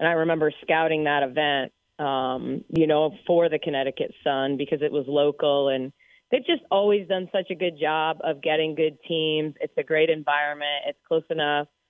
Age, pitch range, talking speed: 30-49, 140-160 Hz, 185 wpm